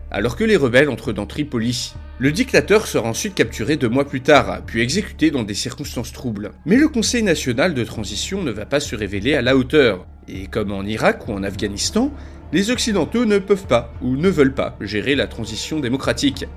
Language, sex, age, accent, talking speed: French, male, 30-49, French, 205 wpm